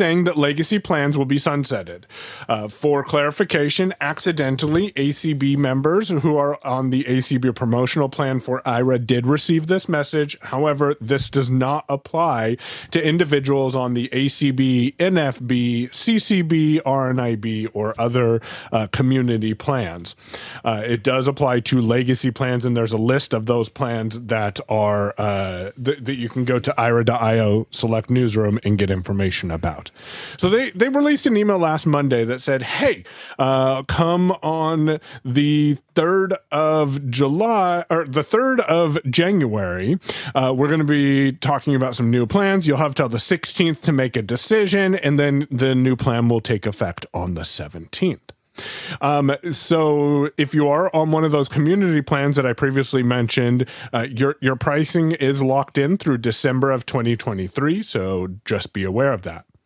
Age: 30-49